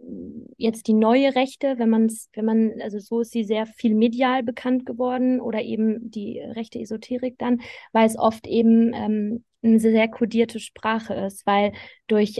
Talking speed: 180 wpm